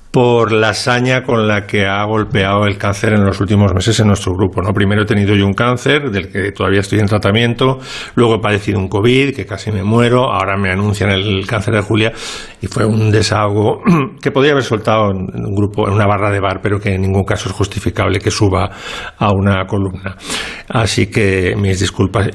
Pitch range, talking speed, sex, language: 100-115 Hz, 210 wpm, male, Spanish